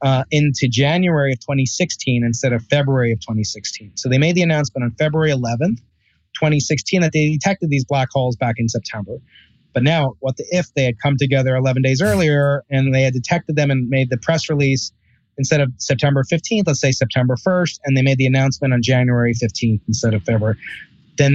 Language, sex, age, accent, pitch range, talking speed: English, male, 30-49, American, 125-155 Hz, 195 wpm